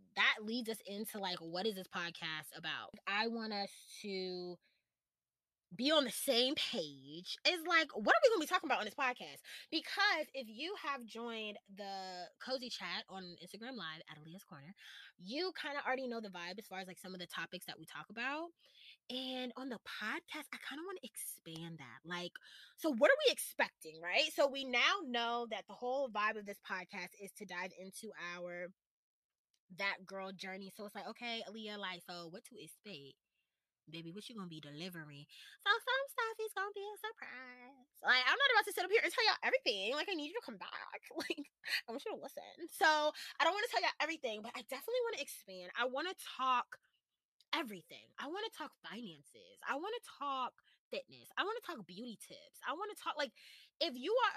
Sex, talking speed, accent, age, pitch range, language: female, 215 wpm, American, 20-39, 185-300 Hz, English